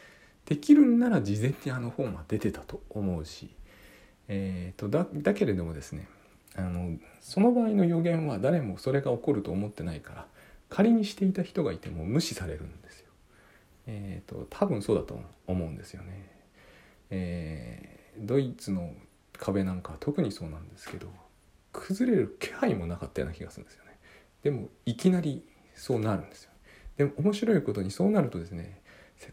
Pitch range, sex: 95-150 Hz, male